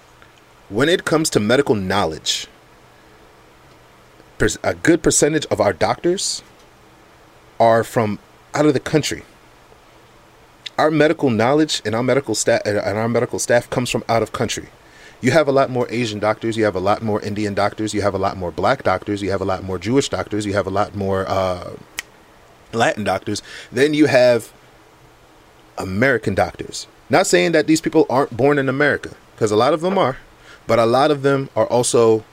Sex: male